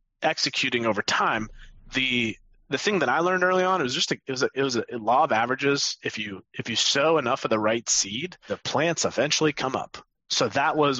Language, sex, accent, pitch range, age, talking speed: English, male, American, 125-160 Hz, 30-49, 235 wpm